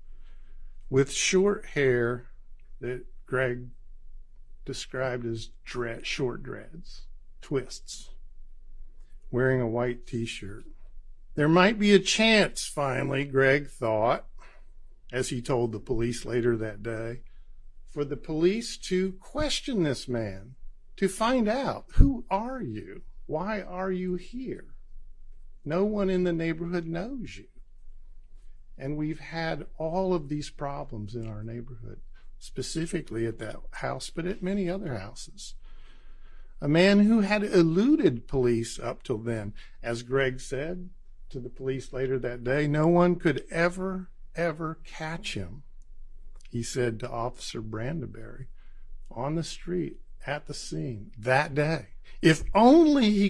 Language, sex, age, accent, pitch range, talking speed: English, male, 50-69, American, 120-180 Hz, 130 wpm